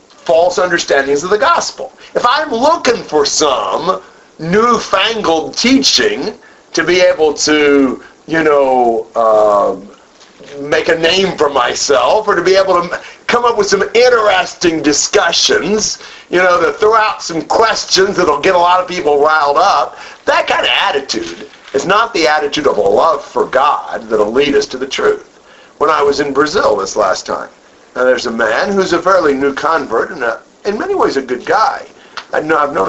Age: 50-69